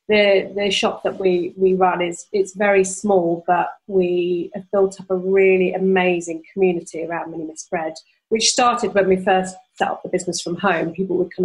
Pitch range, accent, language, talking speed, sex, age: 180-205 Hz, British, English, 195 wpm, female, 40-59